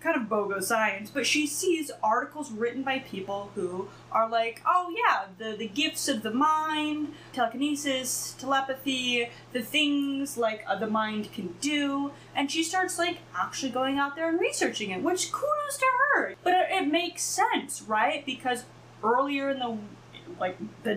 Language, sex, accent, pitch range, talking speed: English, female, American, 220-315 Hz, 165 wpm